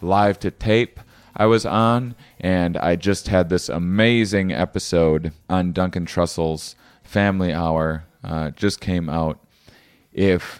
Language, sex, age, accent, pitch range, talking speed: English, male, 30-49, American, 80-100 Hz, 130 wpm